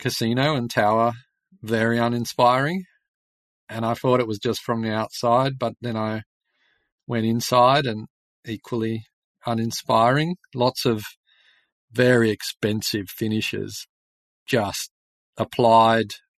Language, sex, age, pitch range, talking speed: English, male, 40-59, 110-130 Hz, 105 wpm